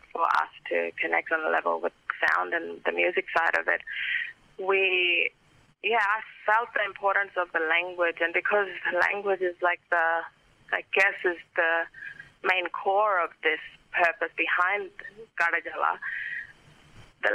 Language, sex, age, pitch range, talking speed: English, female, 20-39, 165-195 Hz, 150 wpm